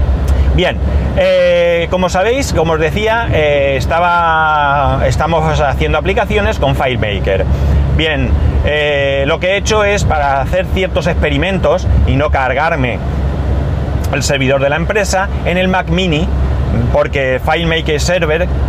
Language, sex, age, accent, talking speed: Spanish, male, 30-49, Spanish, 130 wpm